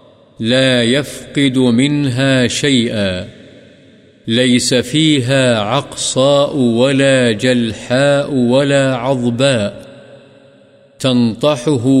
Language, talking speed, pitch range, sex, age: Urdu, 60 wpm, 120-140 Hz, male, 50-69